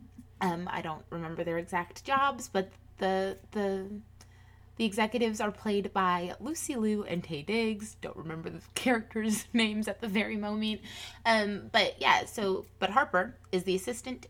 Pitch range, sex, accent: 165-220 Hz, female, American